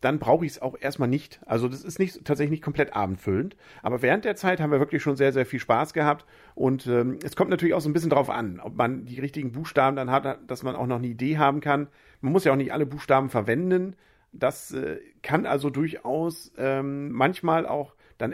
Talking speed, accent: 230 wpm, German